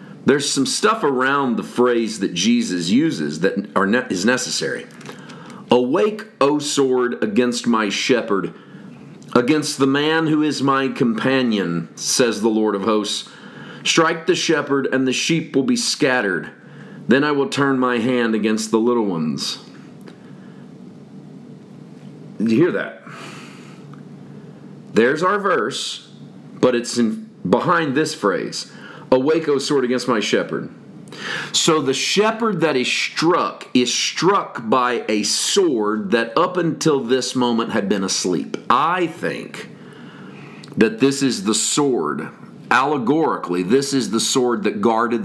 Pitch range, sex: 115-145 Hz, male